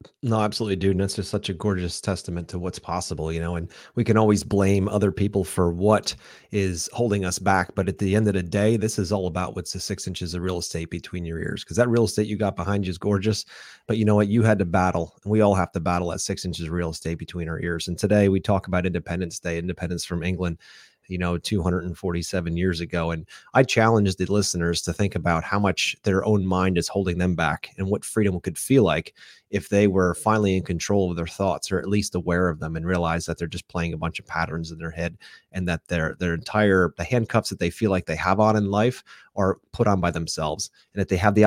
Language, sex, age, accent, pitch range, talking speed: English, male, 30-49, American, 85-100 Hz, 250 wpm